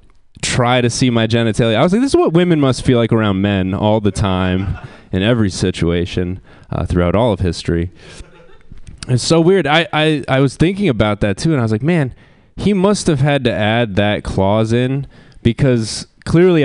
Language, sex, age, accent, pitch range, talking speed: English, male, 20-39, American, 110-160 Hz, 195 wpm